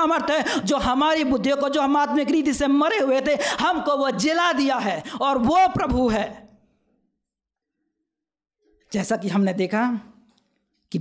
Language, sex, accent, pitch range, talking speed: Hindi, female, native, 200-280 Hz, 135 wpm